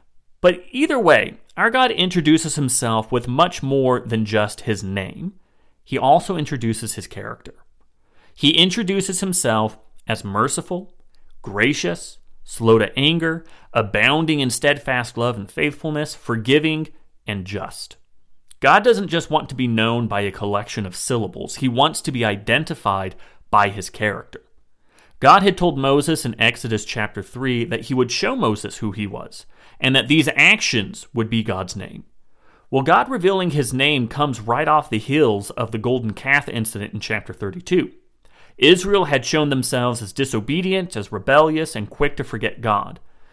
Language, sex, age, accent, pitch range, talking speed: English, male, 30-49, American, 110-155 Hz, 155 wpm